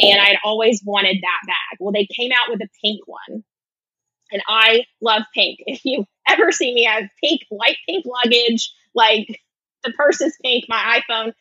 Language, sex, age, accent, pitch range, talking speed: English, female, 20-39, American, 195-240 Hz, 190 wpm